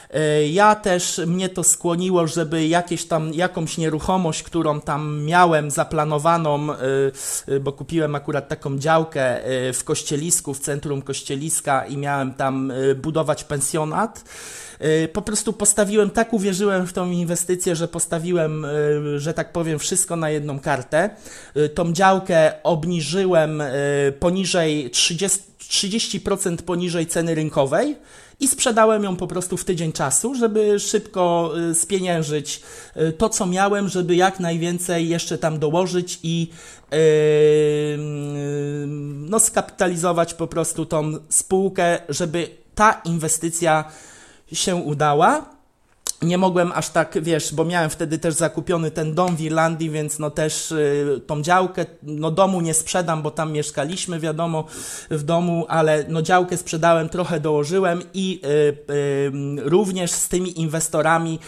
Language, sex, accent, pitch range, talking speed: Polish, male, native, 150-180 Hz, 125 wpm